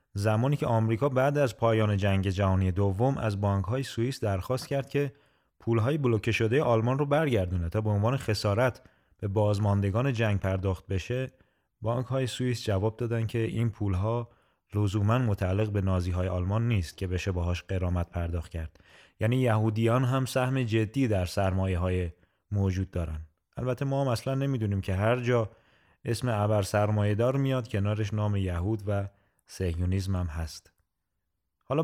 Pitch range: 95-120 Hz